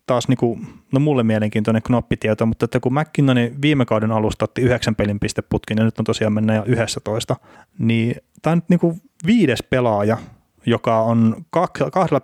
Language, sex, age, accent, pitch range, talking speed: Finnish, male, 30-49, native, 110-130 Hz, 160 wpm